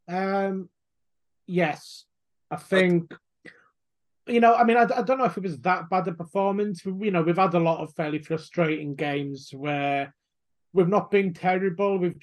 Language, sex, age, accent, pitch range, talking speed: English, male, 30-49, British, 145-185 Hz, 175 wpm